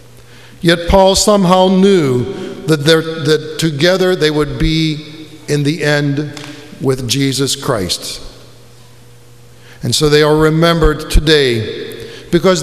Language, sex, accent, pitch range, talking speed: English, male, American, 120-185 Hz, 110 wpm